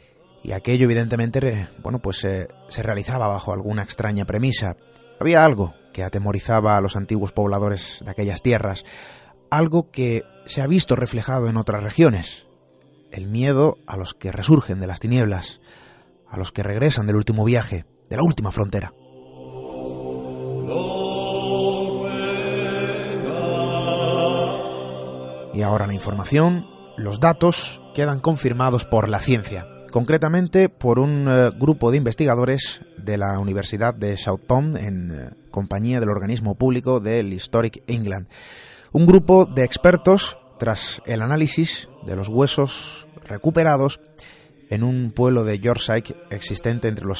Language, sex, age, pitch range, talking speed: Spanish, male, 30-49, 100-145 Hz, 130 wpm